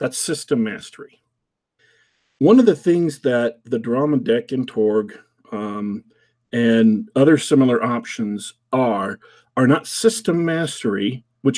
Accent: American